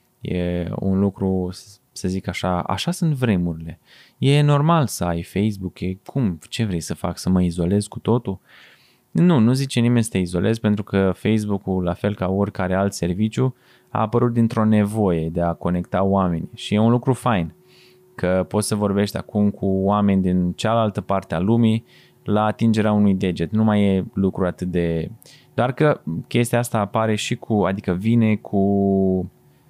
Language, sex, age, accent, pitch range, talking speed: Romanian, male, 20-39, native, 90-115 Hz, 175 wpm